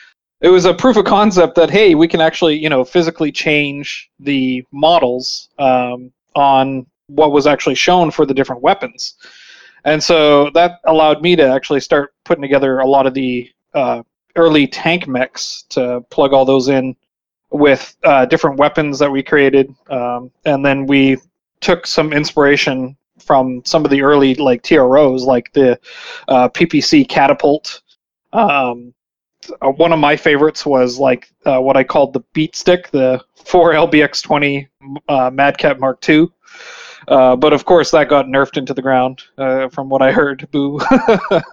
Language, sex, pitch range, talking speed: English, male, 130-160 Hz, 160 wpm